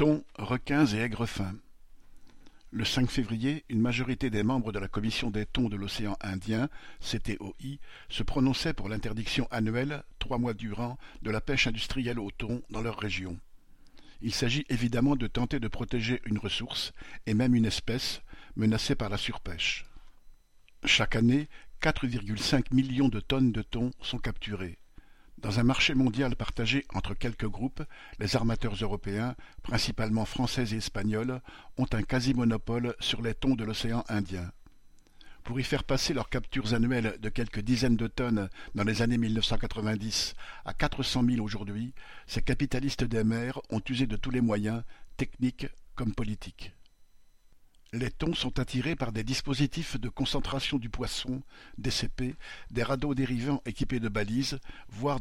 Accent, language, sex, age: French, French, male, 50-69